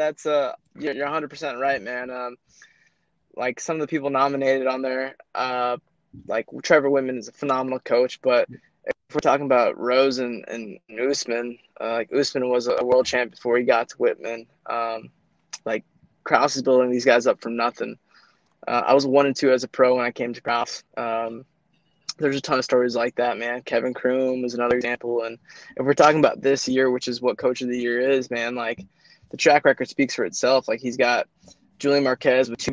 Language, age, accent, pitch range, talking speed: English, 20-39, American, 120-135 Hz, 210 wpm